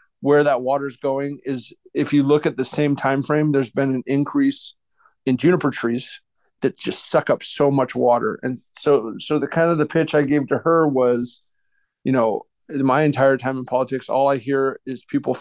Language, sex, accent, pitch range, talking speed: English, male, American, 130-150 Hz, 205 wpm